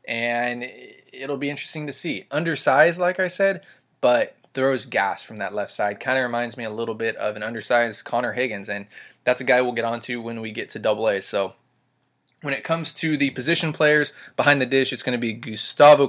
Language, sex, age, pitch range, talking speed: English, male, 20-39, 115-135 Hz, 215 wpm